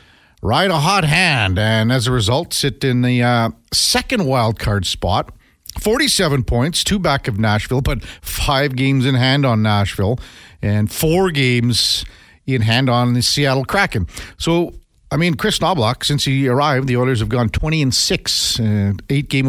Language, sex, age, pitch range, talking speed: English, male, 50-69, 110-160 Hz, 165 wpm